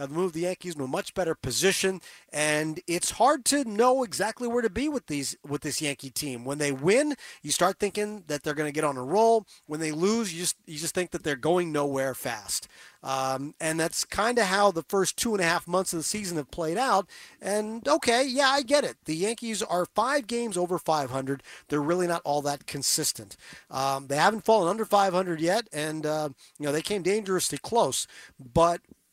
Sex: male